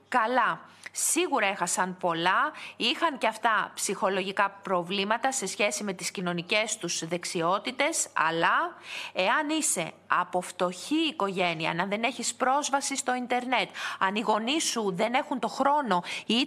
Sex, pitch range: female, 190-255 Hz